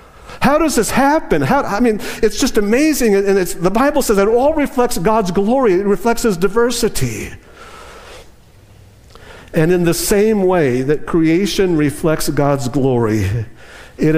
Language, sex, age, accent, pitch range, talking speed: English, male, 50-69, American, 115-195 Hz, 150 wpm